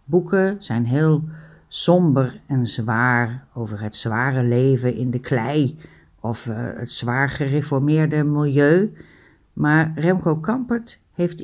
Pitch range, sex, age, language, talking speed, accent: 135-160 Hz, female, 60-79, Dutch, 120 wpm, Dutch